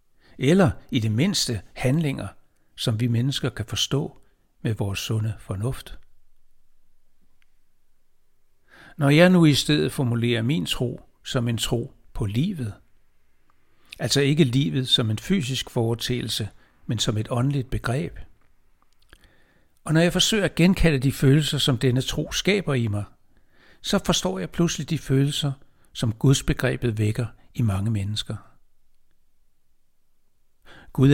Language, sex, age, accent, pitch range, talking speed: Danish, male, 60-79, native, 110-145 Hz, 125 wpm